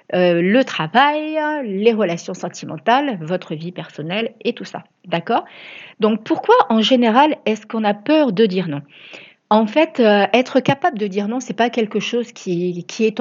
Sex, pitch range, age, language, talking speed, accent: female, 180-235 Hz, 40-59, French, 180 wpm, French